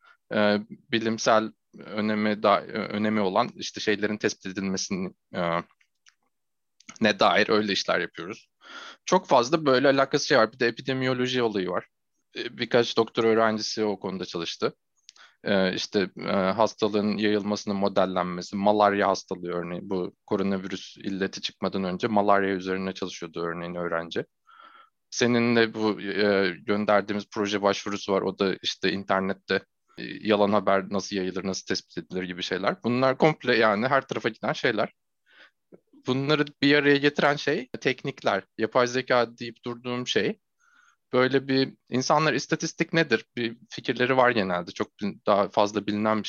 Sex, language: male, Turkish